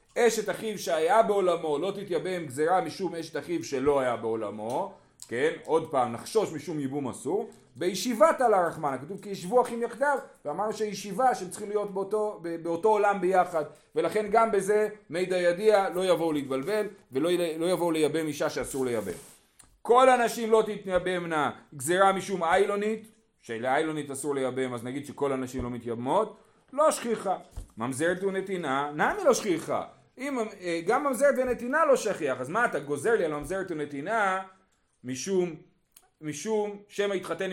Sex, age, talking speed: male, 40-59, 150 wpm